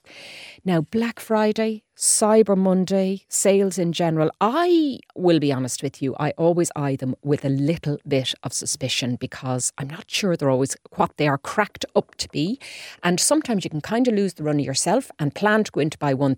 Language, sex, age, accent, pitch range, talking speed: English, female, 40-59, Irish, 130-190 Hz, 200 wpm